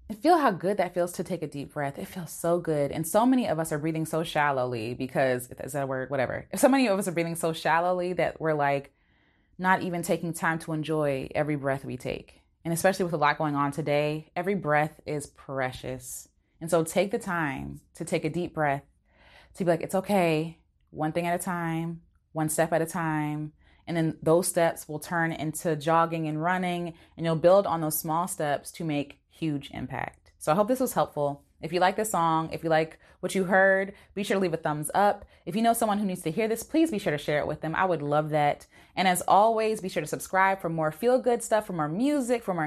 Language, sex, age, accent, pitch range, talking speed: English, female, 20-39, American, 155-195 Hz, 240 wpm